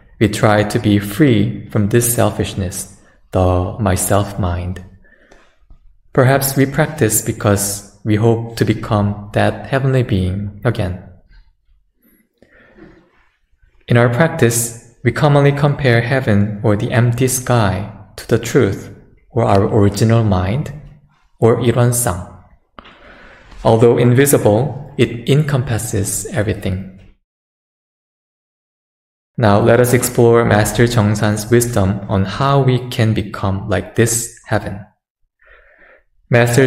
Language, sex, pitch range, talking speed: English, male, 100-120 Hz, 105 wpm